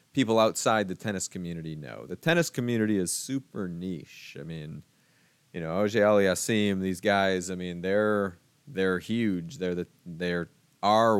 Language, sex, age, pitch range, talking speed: English, male, 30-49, 90-110 Hz, 145 wpm